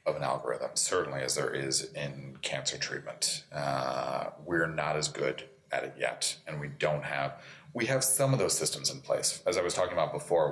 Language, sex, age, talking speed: English, male, 30-49, 205 wpm